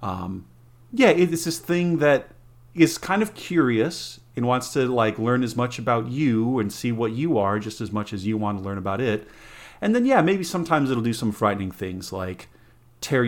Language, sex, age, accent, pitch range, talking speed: English, male, 40-59, American, 110-135 Hz, 210 wpm